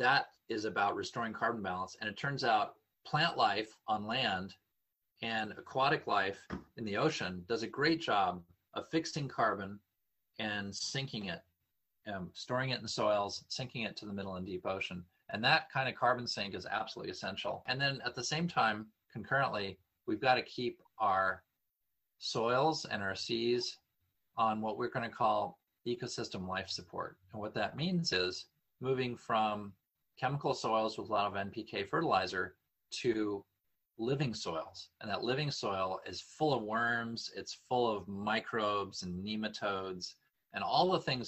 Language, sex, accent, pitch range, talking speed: English, male, American, 95-125 Hz, 165 wpm